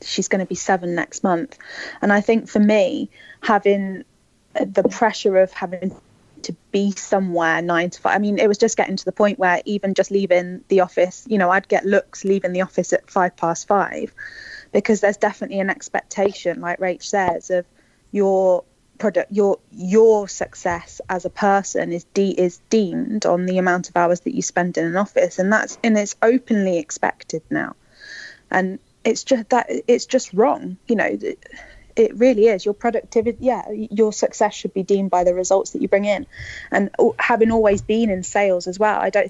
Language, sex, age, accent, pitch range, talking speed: English, female, 20-39, British, 185-220 Hz, 190 wpm